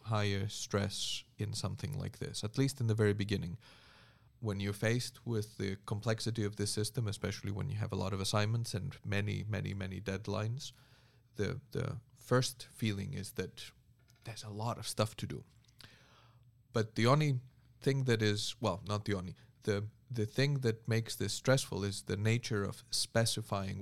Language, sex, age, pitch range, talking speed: English, male, 30-49, 105-120 Hz, 175 wpm